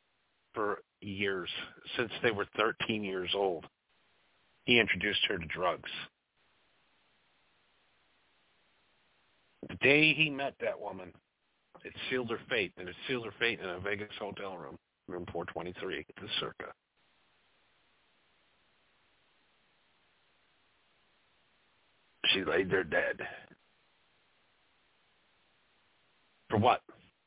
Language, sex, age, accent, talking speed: English, male, 50-69, American, 100 wpm